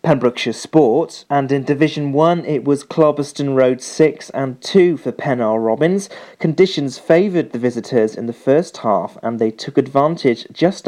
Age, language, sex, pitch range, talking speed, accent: 40-59, English, male, 125-165 Hz, 150 wpm, British